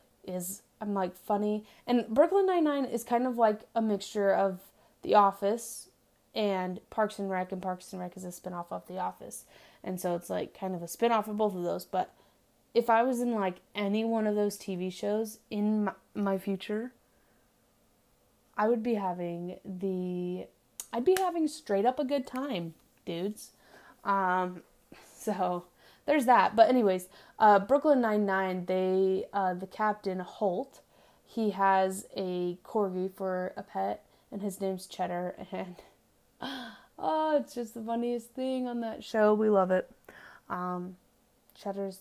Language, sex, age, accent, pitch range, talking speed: English, female, 20-39, American, 185-230 Hz, 160 wpm